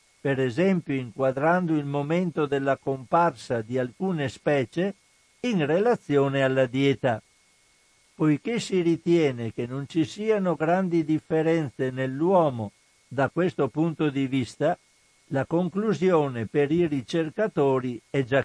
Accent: native